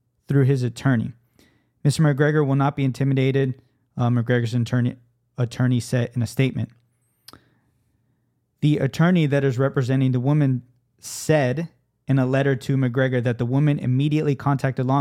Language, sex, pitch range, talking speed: English, male, 125-140 Hz, 145 wpm